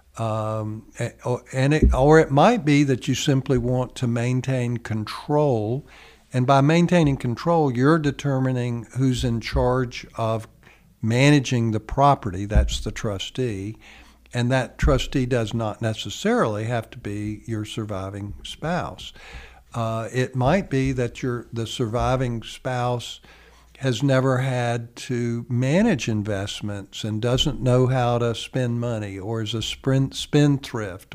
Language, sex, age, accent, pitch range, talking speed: English, male, 60-79, American, 110-130 Hz, 135 wpm